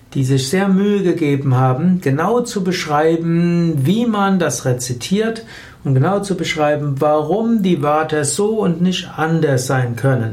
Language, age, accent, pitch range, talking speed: German, 60-79, German, 140-175 Hz, 150 wpm